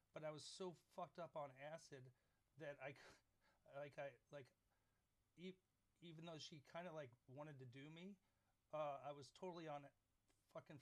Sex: male